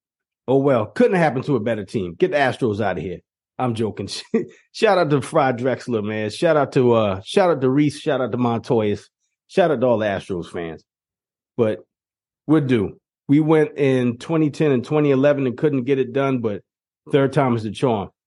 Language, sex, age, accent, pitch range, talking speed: English, male, 30-49, American, 115-150 Hz, 200 wpm